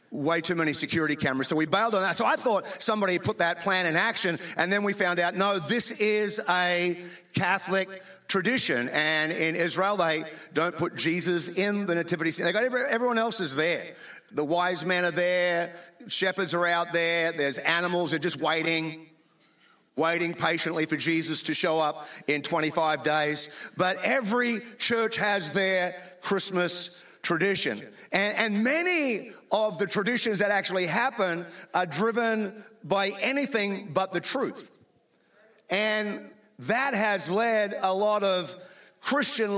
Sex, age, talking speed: male, 40-59, 155 wpm